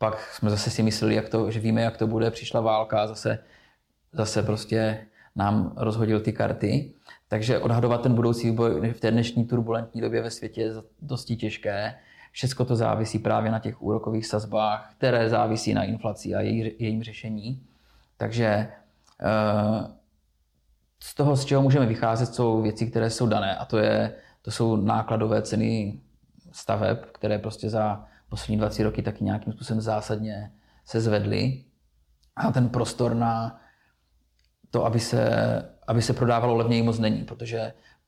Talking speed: 155 wpm